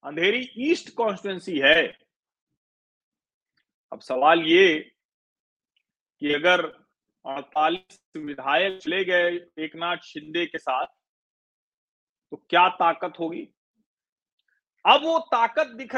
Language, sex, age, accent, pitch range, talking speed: Hindi, male, 40-59, native, 180-275 Hz, 95 wpm